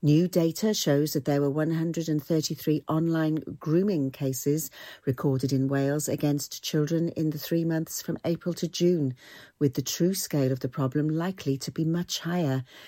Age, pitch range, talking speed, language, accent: 50-69, 135-160 Hz, 165 wpm, English, British